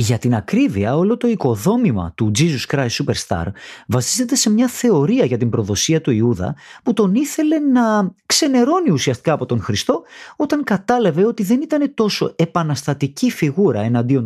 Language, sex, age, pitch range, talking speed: Greek, male, 30-49, 125-215 Hz, 155 wpm